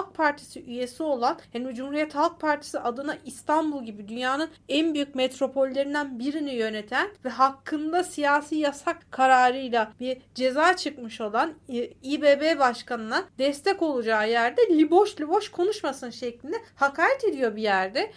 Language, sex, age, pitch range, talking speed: Turkish, female, 40-59, 270-345 Hz, 130 wpm